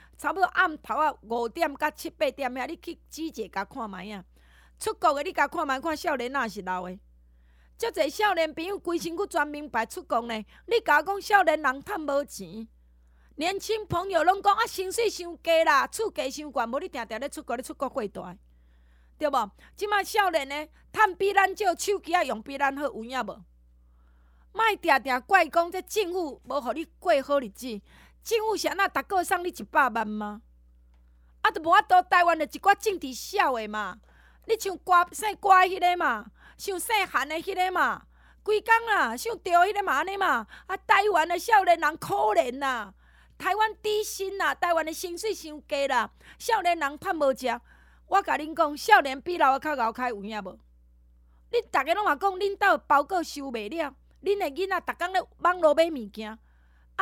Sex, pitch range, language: female, 240-375 Hz, Chinese